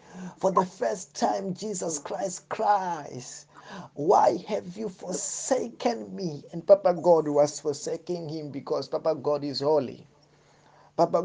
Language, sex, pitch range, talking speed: English, male, 145-190 Hz, 130 wpm